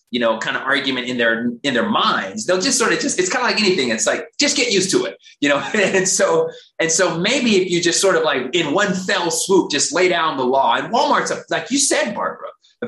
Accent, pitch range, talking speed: American, 130-210 Hz, 260 wpm